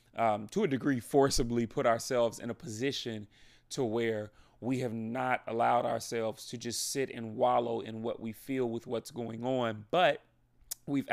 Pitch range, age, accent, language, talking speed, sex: 110-125 Hz, 30-49, American, English, 175 wpm, male